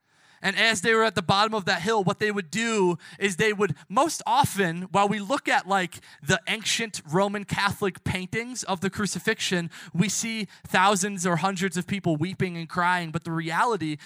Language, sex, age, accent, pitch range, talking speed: English, male, 20-39, American, 165-215 Hz, 190 wpm